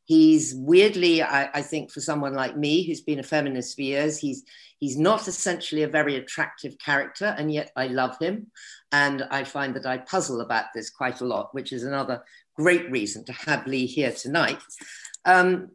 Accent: British